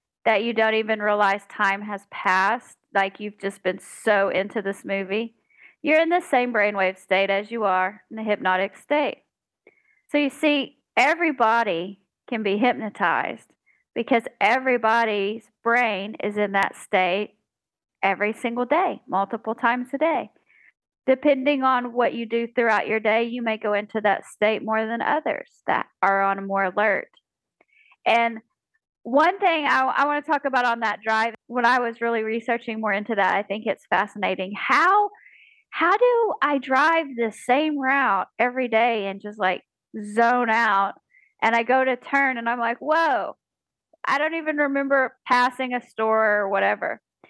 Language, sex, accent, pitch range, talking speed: English, female, American, 210-275 Hz, 165 wpm